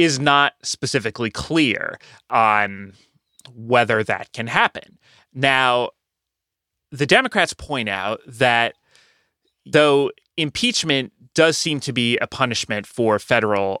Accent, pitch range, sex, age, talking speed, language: American, 105-140 Hz, male, 30-49, 110 wpm, English